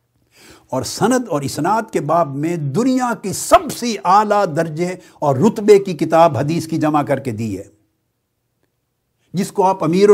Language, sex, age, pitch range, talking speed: Urdu, male, 60-79, 155-210 Hz, 170 wpm